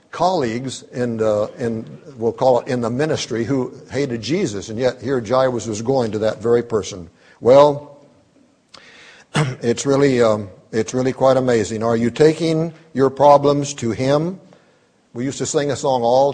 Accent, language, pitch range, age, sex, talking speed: American, English, 120-155 Hz, 60-79, male, 170 wpm